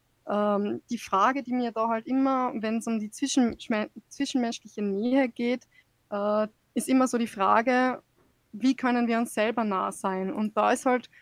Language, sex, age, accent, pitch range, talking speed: German, female, 20-39, German, 210-245 Hz, 175 wpm